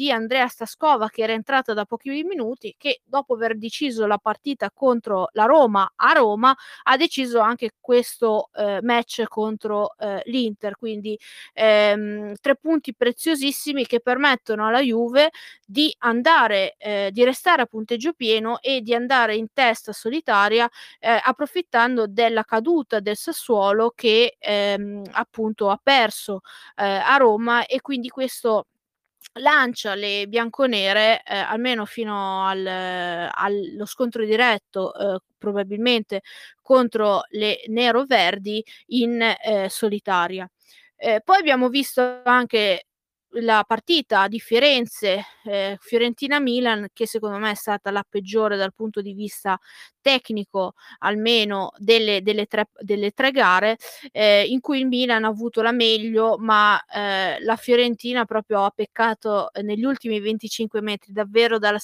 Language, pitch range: Italian, 210-250 Hz